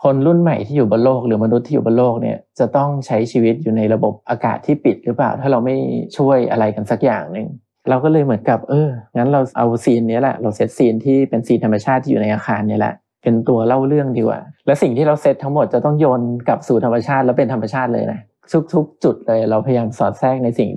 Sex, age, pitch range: male, 20-39, 115-135 Hz